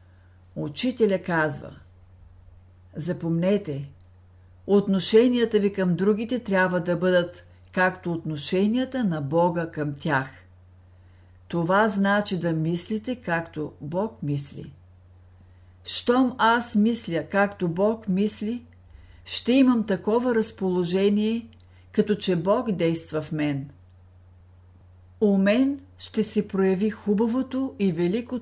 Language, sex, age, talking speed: Bulgarian, female, 50-69, 100 wpm